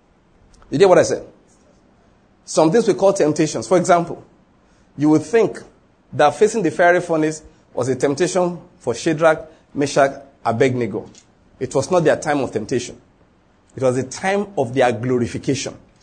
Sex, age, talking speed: male, 40-59, 155 wpm